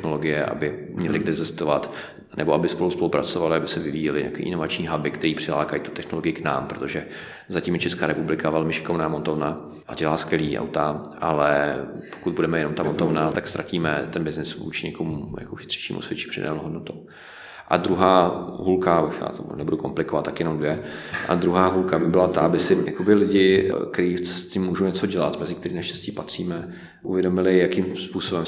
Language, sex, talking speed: Czech, male, 170 wpm